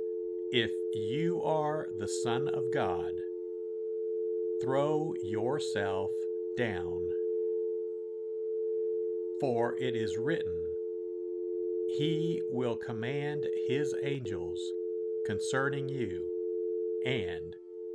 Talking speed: 75 wpm